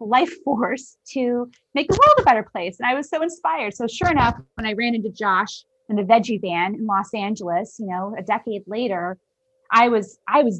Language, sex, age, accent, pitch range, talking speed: English, female, 30-49, American, 190-260 Hz, 215 wpm